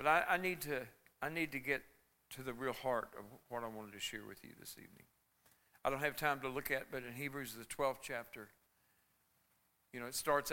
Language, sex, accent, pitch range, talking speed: English, male, American, 115-145 Hz, 230 wpm